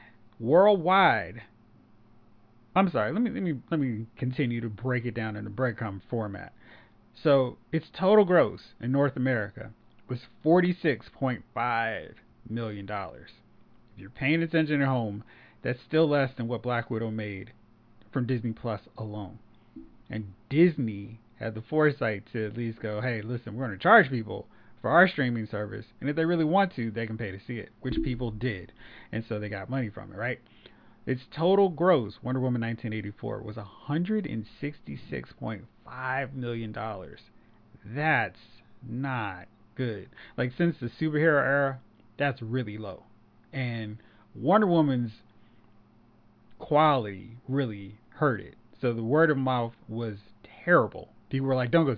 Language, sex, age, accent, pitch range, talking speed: English, male, 30-49, American, 110-135 Hz, 150 wpm